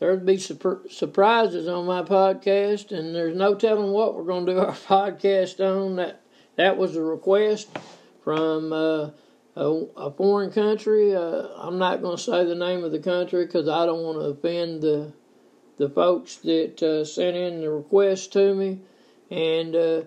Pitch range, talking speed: 170-195 Hz, 175 wpm